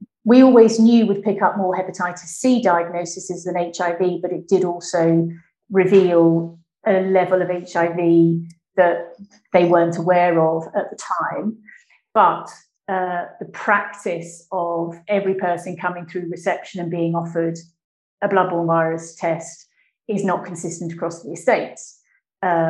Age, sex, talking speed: 40-59, female, 140 wpm